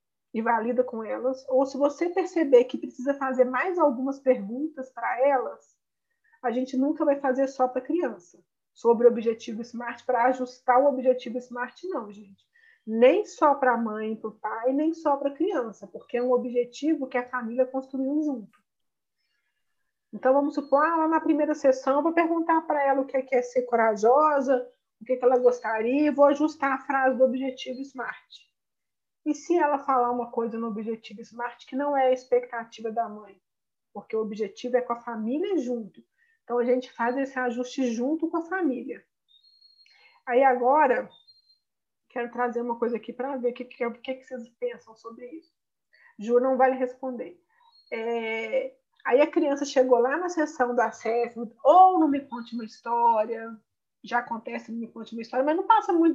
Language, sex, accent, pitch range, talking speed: Portuguese, female, Brazilian, 235-285 Hz, 185 wpm